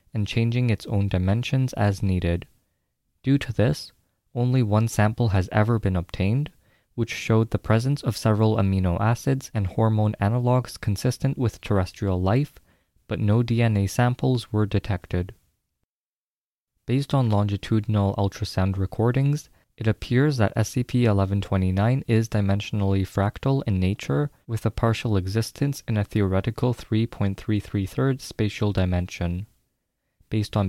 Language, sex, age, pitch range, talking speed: English, male, 20-39, 100-120 Hz, 125 wpm